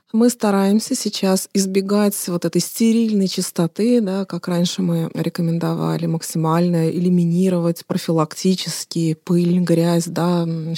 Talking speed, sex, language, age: 95 wpm, female, Russian, 30-49